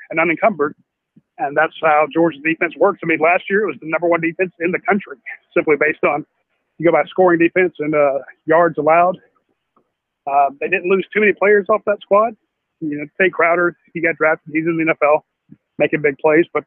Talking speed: 210 wpm